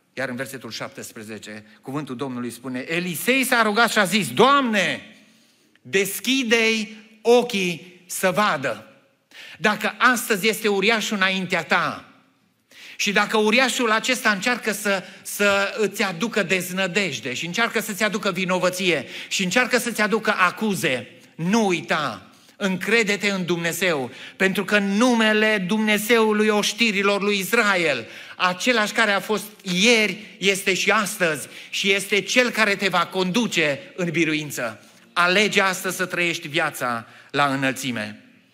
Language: Romanian